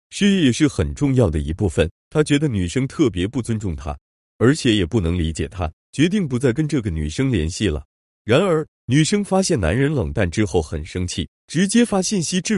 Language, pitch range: Chinese, 85-145 Hz